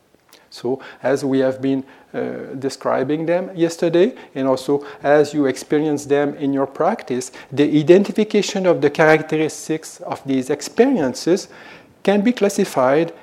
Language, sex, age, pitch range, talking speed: English, male, 50-69, 135-170 Hz, 130 wpm